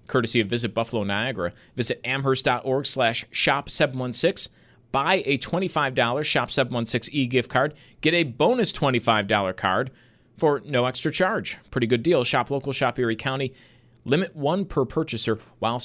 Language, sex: English, male